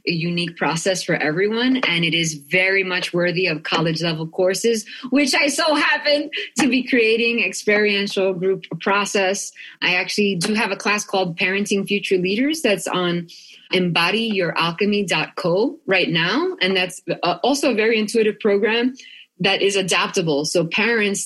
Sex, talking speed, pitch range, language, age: female, 145 wpm, 165-205 Hz, English, 20-39